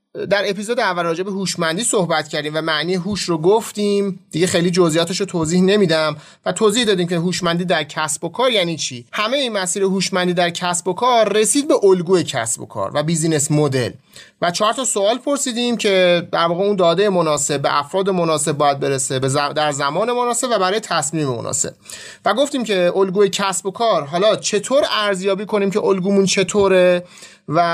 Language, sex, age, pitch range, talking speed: Persian, male, 30-49, 175-215 Hz, 175 wpm